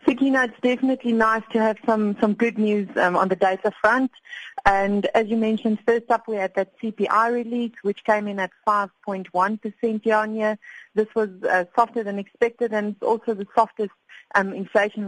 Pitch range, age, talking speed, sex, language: 185-225 Hz, 30-49, 190 wpm, female, English